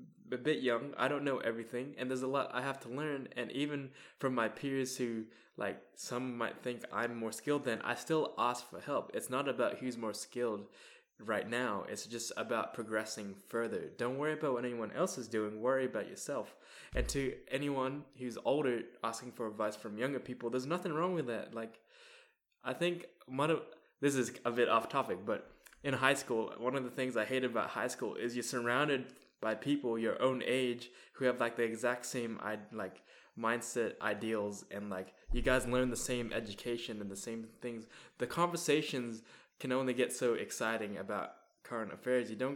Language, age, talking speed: English, 10-29, 195 wpm